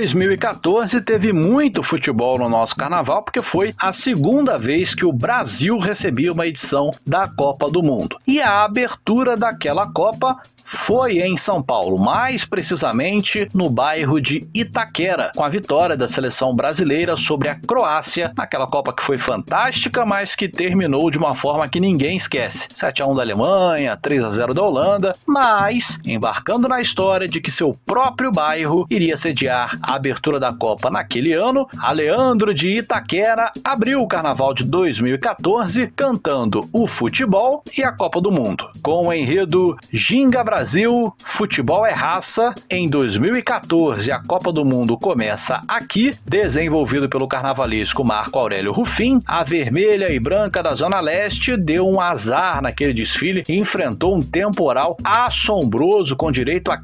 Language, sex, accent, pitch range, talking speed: Portuguese, male, Brazilian, 145-225 Hz, 150 wpm